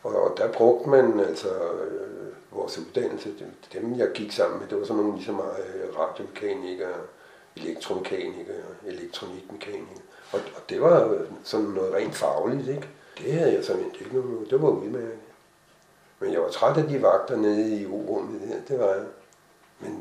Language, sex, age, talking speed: Danish, male, 60-79, 170 wpm